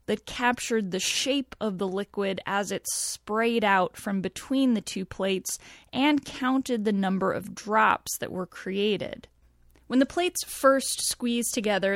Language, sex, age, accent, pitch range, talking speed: English, female, 10-29, American, 195-255 Hz, 155 wpm